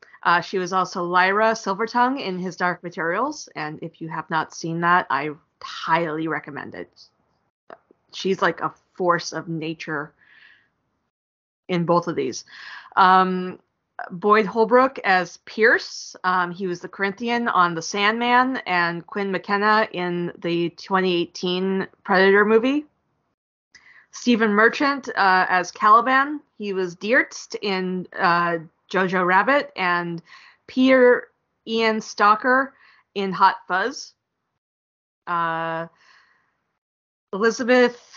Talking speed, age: 115 wpm, 20-39